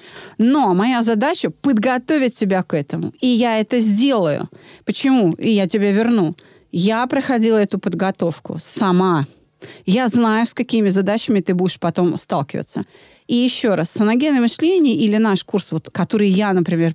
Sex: female